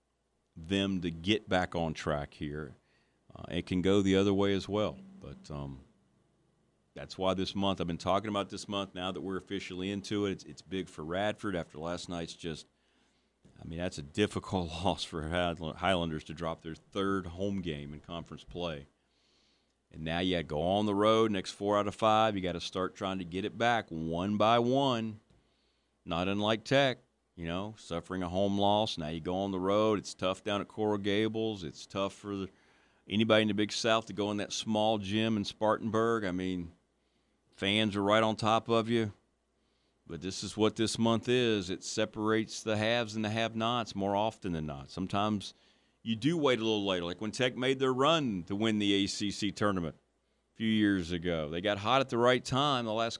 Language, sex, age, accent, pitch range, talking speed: English, male, 40-59, American, 85-110 Hz, 205 wpm